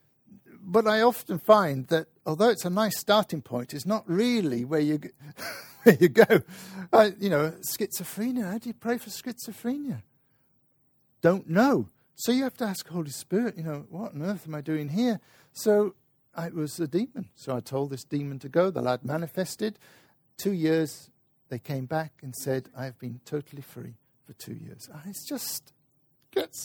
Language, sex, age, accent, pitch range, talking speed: English, male, 60-79, British, 135-195 Hz, 180 wpm